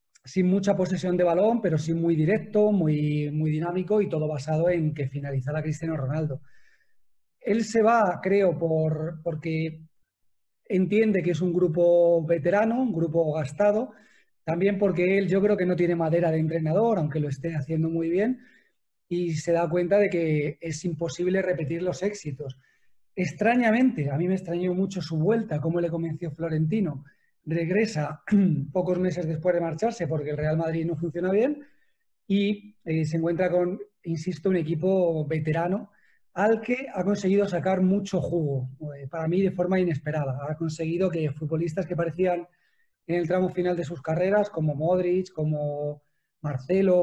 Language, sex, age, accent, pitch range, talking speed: Spanish, male, 30-49, Spanish, 160-195 Hz, 160 wpm